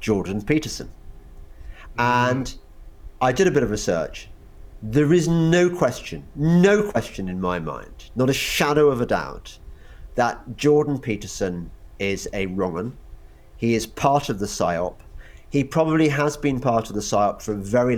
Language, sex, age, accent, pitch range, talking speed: English, male, 40-59, British, 95-135 Hz, 155 wpm